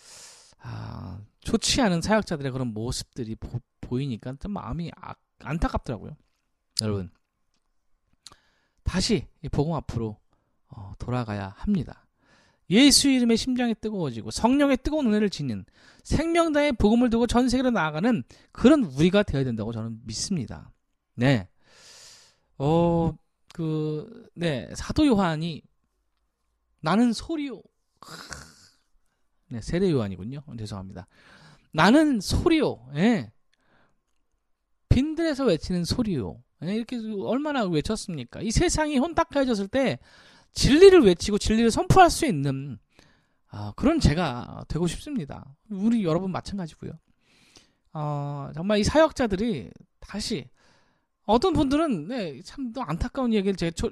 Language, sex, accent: Korean, male, native